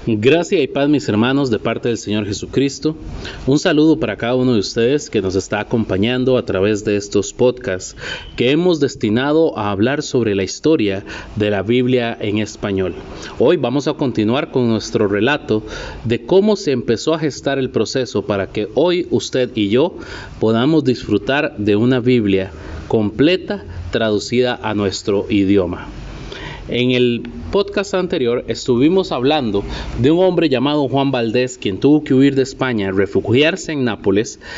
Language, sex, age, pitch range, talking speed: Spanish, male, 30-49, 105-140 Hz, 160 wpm